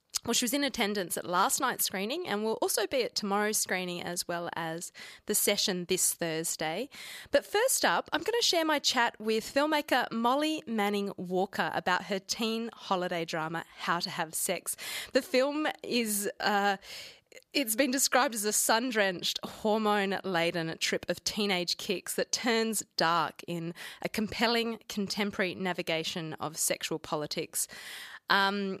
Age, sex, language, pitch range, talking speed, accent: 20-39, female, English, 185-235 Hz, 150 wpm, Australian